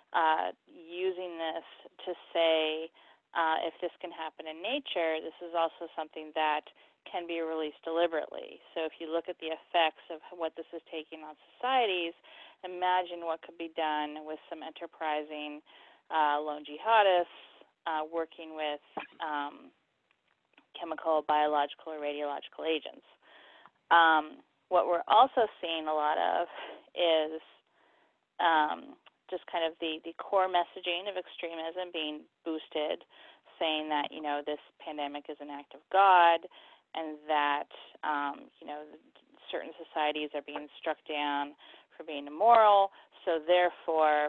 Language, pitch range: English, 150-170 Hz